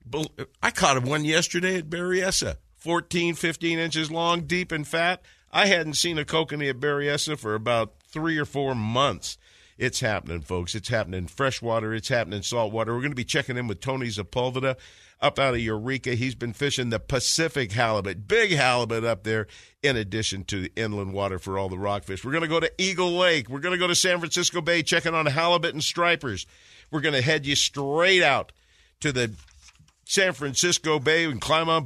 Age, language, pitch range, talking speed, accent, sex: 50-69, English, 115-160 Hz, 200 wpm, American, male